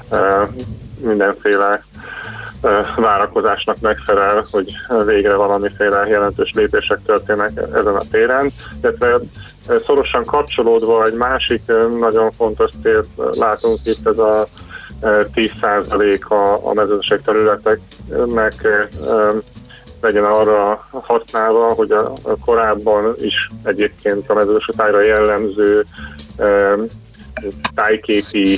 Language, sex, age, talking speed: Hungarian, male, 30-49, 85 wpm